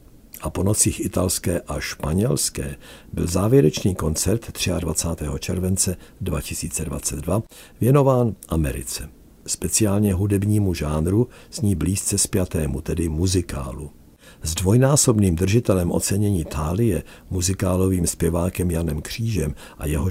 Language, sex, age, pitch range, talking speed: Czech, male, 60-79, 80-100 Hz, 100 wpm